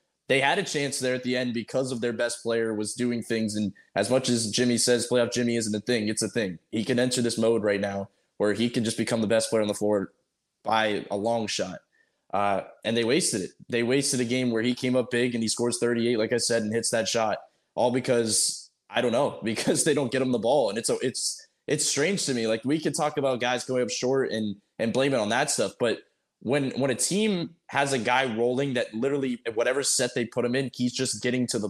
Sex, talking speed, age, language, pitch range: male, 255 wpm, 20-39, English, 110-130 Hz